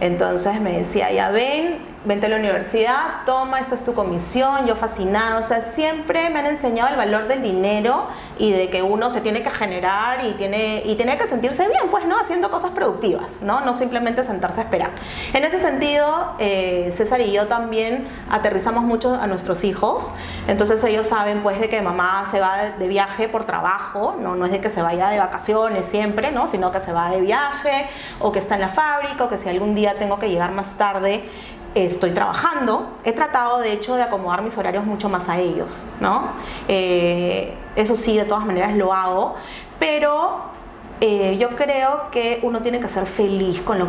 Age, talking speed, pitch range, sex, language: 30-49, 200 wpm, 190-245 Hz, female, Spanish